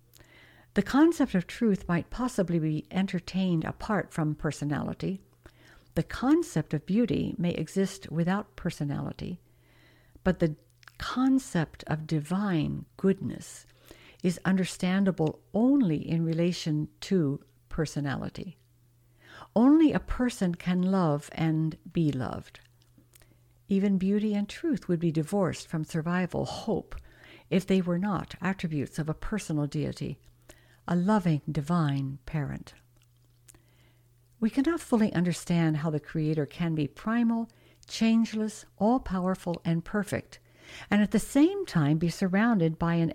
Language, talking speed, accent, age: English, 120 wpm, American, 60-79